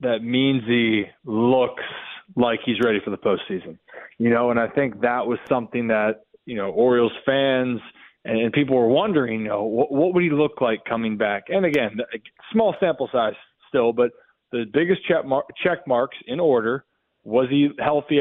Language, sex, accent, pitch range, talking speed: English, male, American, 115-150 Hz, 180 wpm